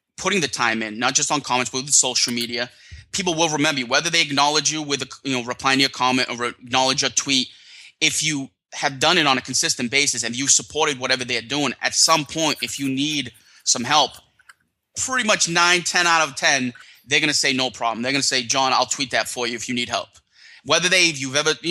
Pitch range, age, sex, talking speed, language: 125-145 Hz, 20-39, male, 240 wpm, English